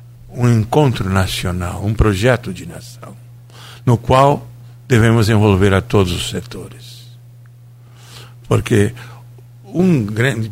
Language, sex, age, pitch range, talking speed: Portuguese, male, 60-79, 110-120 Hz, 105 wpm